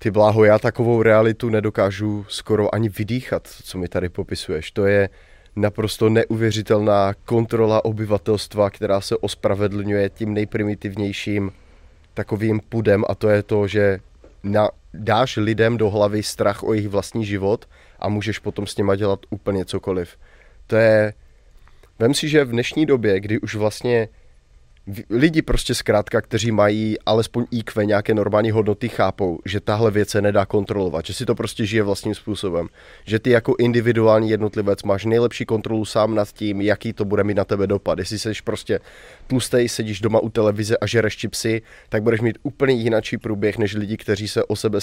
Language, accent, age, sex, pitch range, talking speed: Czech, native, 20-39, male, 100-115 Hz, 165 wpm